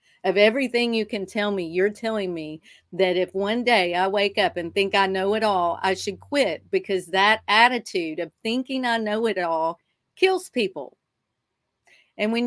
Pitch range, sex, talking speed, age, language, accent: 185-215 Hz, female, 185 wpm, 40-59, English, American